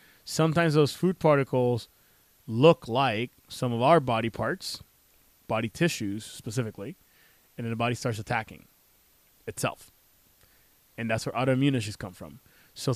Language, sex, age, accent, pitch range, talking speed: English, male, 20-39, American, 115-140 Hz, 130 wpm